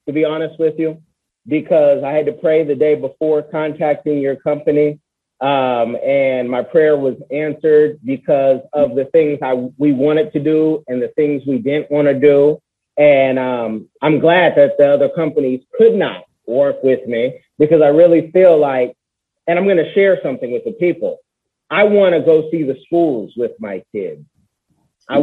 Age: 30-49